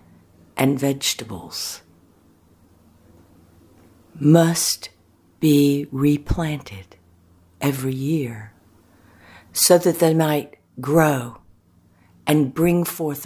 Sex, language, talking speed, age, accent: female, English, 70 wpm, 60-79, American